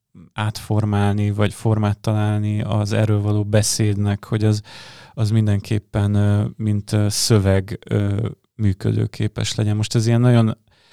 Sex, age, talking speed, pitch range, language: male, 30-49, 110 wpm, 105-115 Hz, Hungarian